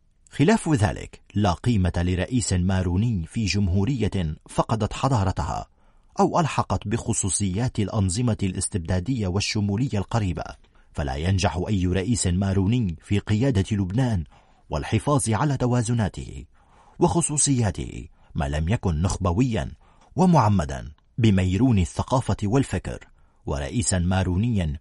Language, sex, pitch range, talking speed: Arabic, male, 90-125 Hz, 95 wpm